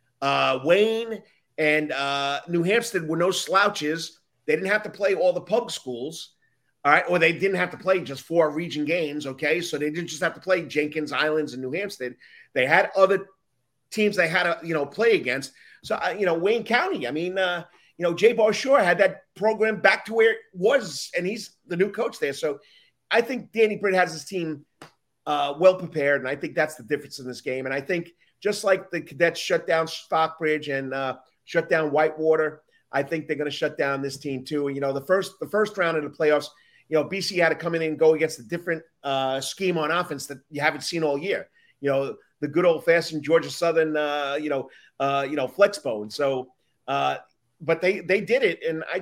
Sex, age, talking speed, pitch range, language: male, 30-49, 220 wpm, 150-195 Hz, English